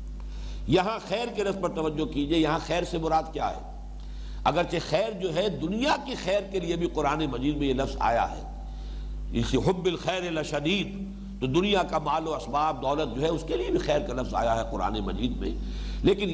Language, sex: English, male